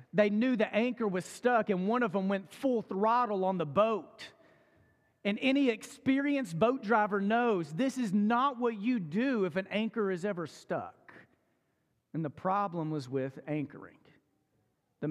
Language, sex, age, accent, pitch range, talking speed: English, male, 40-59, American, 185-235 Hz, 165 wpm